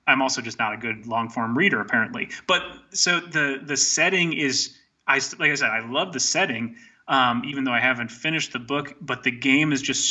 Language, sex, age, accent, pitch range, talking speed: English, male, 30-49, American, 120-140 Hz, 220 wpm